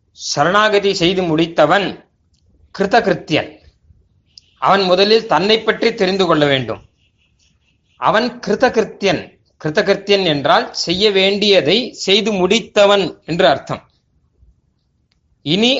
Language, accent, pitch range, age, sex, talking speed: Tamil, native, 150-210 Hz, 30-49, male, 85 wpm